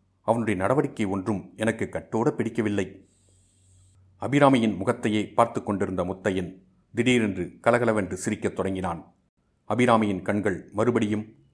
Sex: male